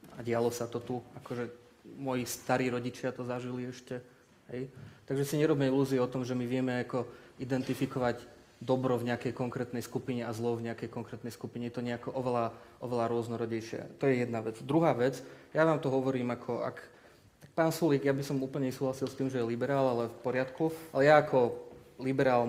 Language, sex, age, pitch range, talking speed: Slovak, male, 20-39, 120-135 Hz, 195 wpm